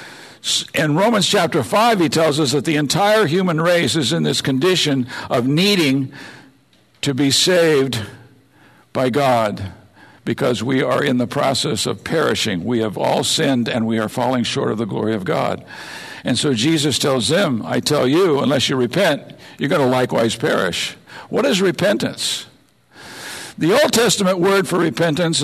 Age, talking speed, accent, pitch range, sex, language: 60-79, 165 wpm, American, 125-170 Hz, male, English